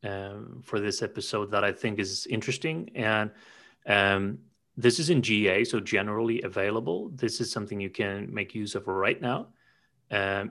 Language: English